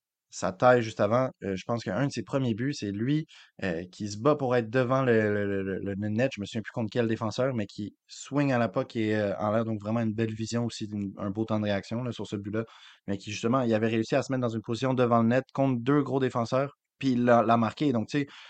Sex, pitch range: male, 110-135 Hz